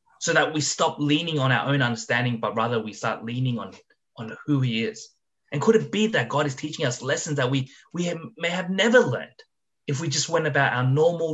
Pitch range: 120-155 Hz